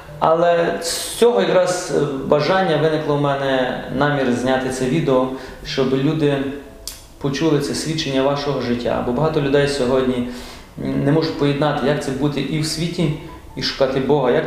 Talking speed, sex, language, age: 150 wpm, male, Ukrainian, 30-49